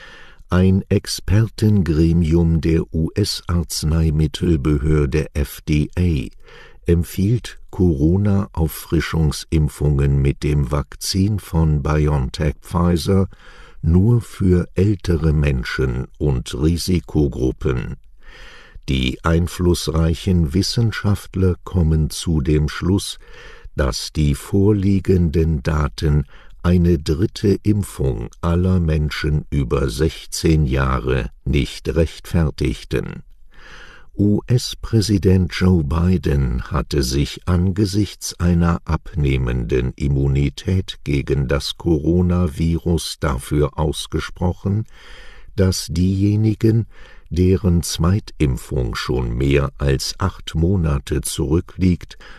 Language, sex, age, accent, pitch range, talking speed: English, male, 60-79, German, 70-90 Hz, 70 wpm